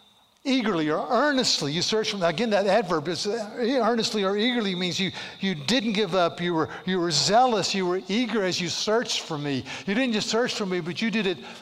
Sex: male